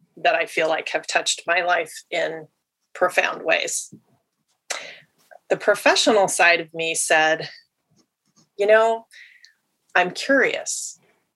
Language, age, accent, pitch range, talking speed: English, 30-49, American, 175-255 Hz, 110 wpm